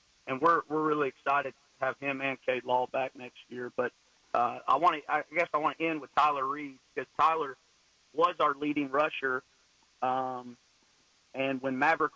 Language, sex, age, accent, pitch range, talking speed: English, male, 40-59, American, 130-150 Hz, 190 wpm